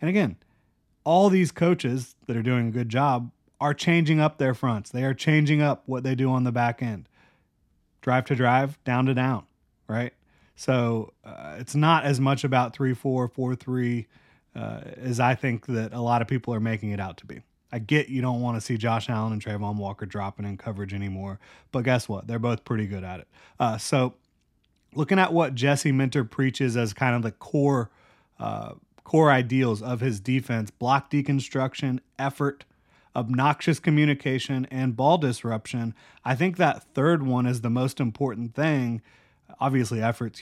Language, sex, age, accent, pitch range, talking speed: English, male, 30-49, American, 115-140 Hz, 185 wpm